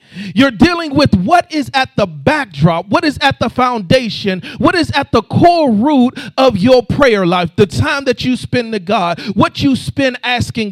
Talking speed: 190 wpm